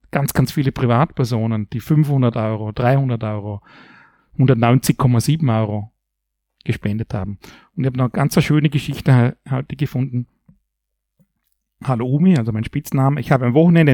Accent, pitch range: Austrian, 115-145 Hz